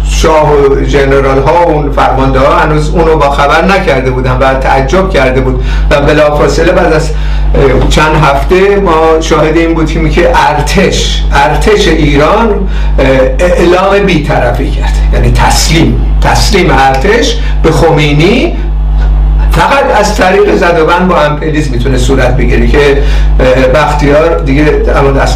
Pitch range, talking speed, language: 140-165 Hz, 130 wpm, Persian